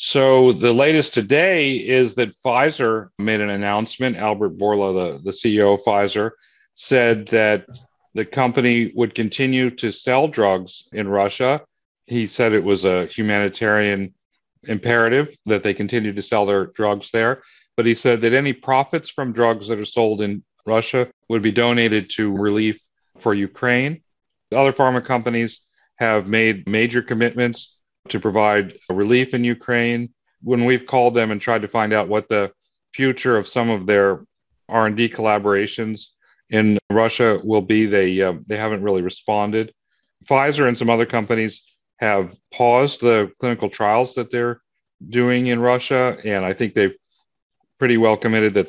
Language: English